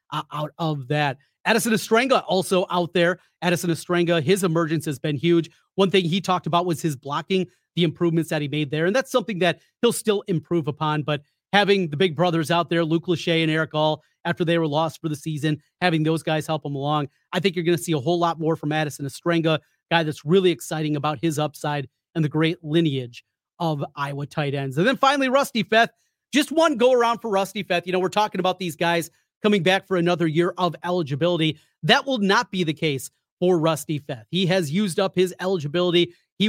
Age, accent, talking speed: 30-49, American, 220 wpm